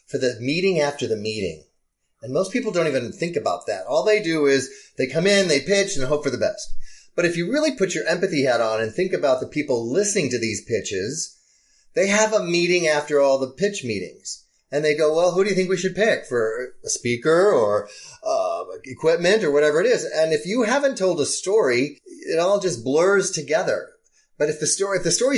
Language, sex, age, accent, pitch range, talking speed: English, male, 30-49, American, 140-200 Hz, 220 wpm